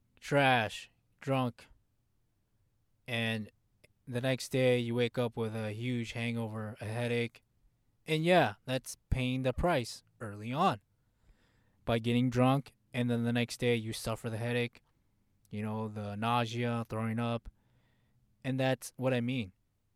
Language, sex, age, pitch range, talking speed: English, male, 20-39, 110-125 Hz, 140 wpm